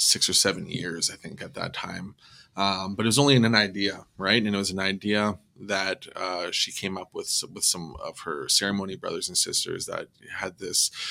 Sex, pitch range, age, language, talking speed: male, 95-105 Hz, 20-39, English, 210 wpm